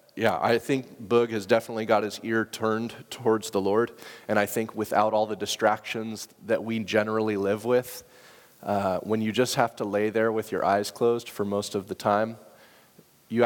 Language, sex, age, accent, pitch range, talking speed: English, male, 30-49, American, 105-125 Hz, 190 wpm